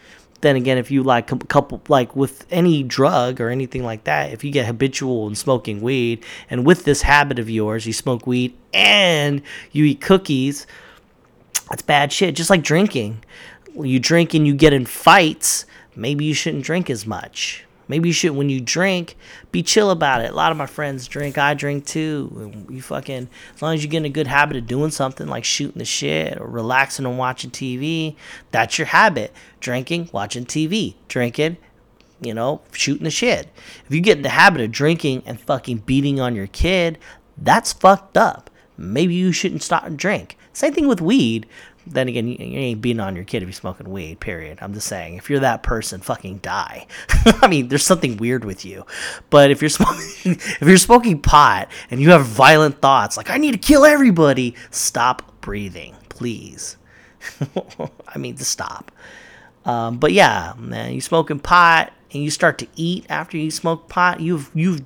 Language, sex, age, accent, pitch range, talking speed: English, male, 30-49, American, 120-165 Hz, 190 wpm